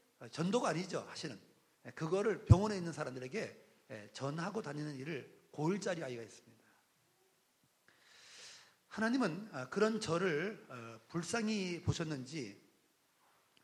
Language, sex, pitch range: Korean, male, 130-195 Hz